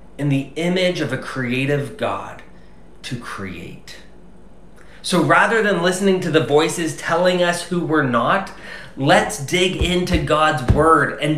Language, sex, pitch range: English, male, 125-175 Hz